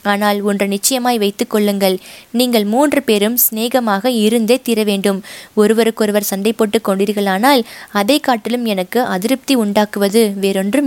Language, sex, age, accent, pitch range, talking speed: Tamil, female, 20-39, native, 200-260 Hz, 120 wpm